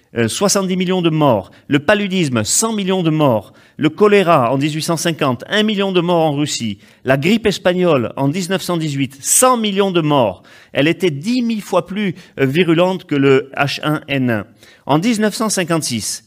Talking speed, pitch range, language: 150 wpm, 130-175 Hz, French